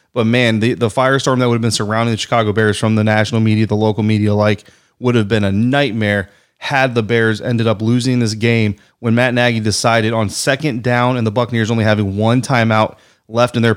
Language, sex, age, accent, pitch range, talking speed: English, male, 30-49, American, 110-120 Hz, 220 wpm